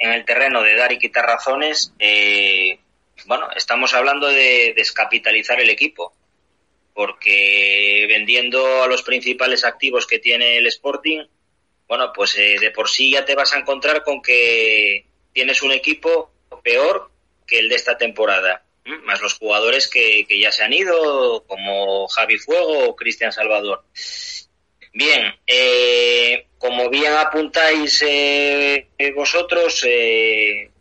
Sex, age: male, 20-39